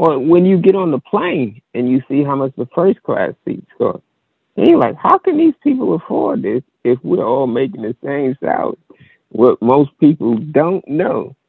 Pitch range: 100-140 Hz